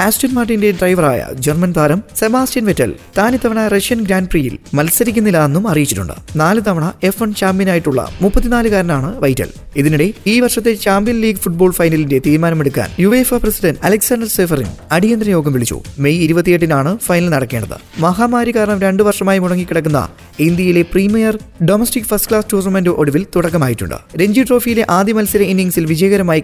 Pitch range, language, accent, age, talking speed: 150-215 Hz, Malayalam, native, 20-39, 135 wpm